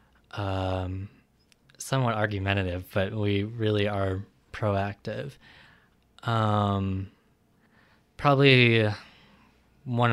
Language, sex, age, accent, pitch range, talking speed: English, male, 20-39, American, 100-115 Hz, 65 wpm